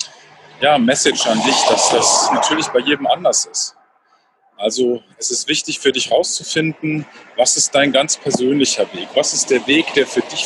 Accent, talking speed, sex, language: German, 180 wpm, male, German